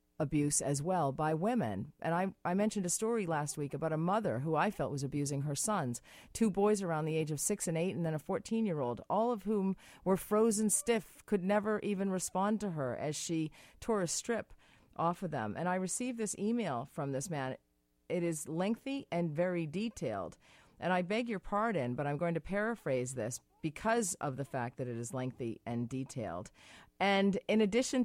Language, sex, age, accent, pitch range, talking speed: English, female, 40-59, American, 145-200 Hz, 200 wpm